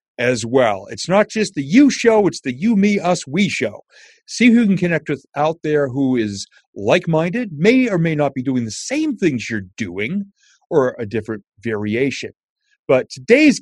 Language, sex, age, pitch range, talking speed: English, male, 40-59, 130-195 Hz, 190 wpm